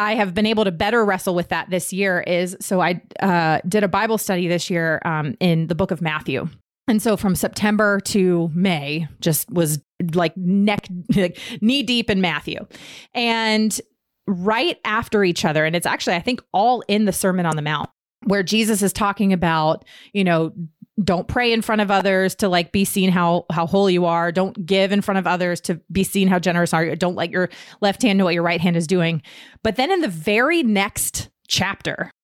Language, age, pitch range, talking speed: English, 30-49, 175-215 Hz, 210 wpm